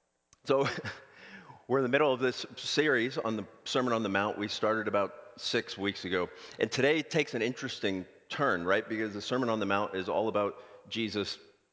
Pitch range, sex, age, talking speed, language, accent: 95-125 Hz, male, 40-59, 195 wpm, English, American